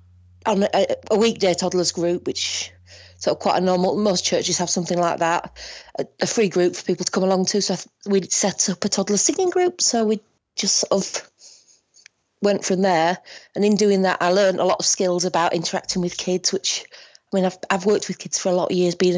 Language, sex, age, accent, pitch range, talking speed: English, female, 30-49, British, 175-200 Hz, 230 wpm